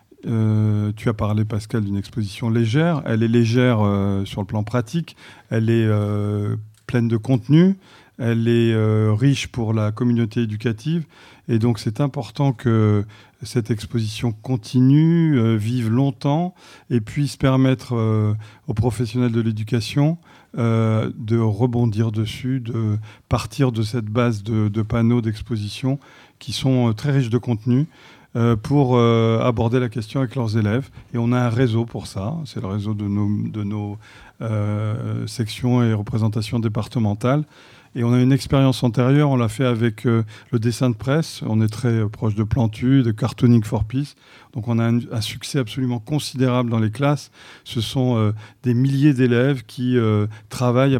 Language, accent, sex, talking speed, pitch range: French, French, male, 165 wpm, 110-130 Hz